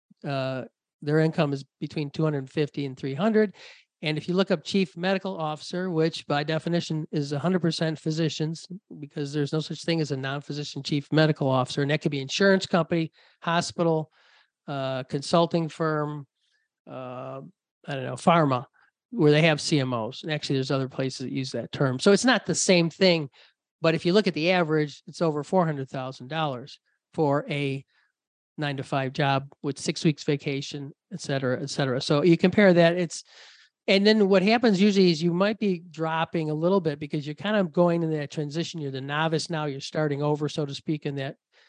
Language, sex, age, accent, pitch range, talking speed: English, male, 40-59, American, 140-170 Hz, 185 wpm